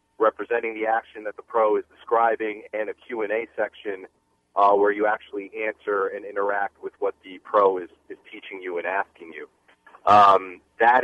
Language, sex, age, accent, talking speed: English, male, 40-59, American, 180 wpm